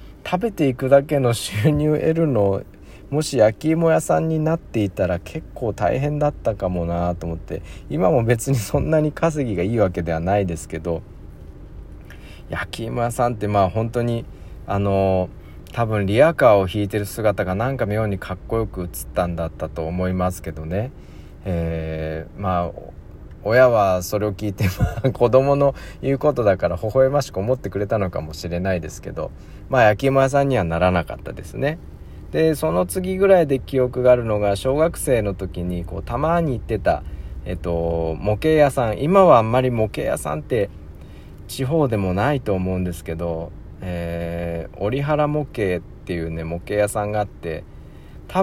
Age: 40-59